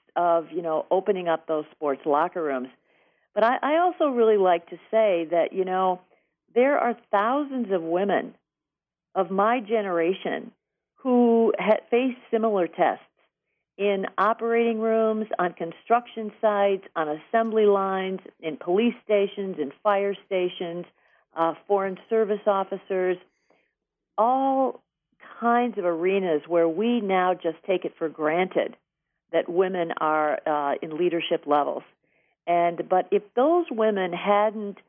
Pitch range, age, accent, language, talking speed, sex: 170-225 Hz, 50-69, American, English, 130 wpm, female